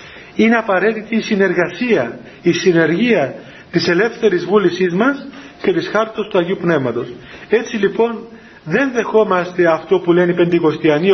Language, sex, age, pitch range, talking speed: Greek, male, 40-59, 180-275 Hz, 135 wpm